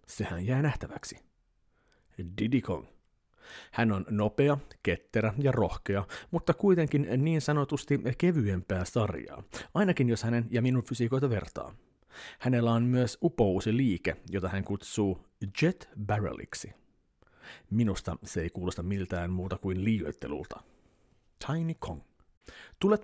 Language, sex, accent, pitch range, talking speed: Finnish, male, native, 105-140 Hz, 115 wpm